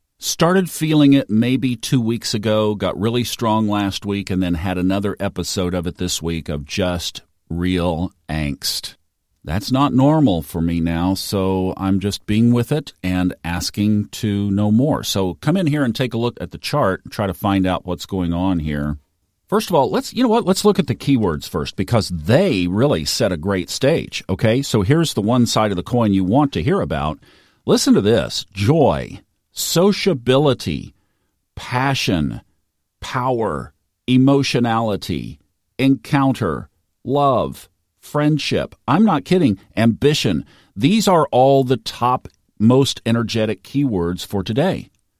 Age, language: 50-69, English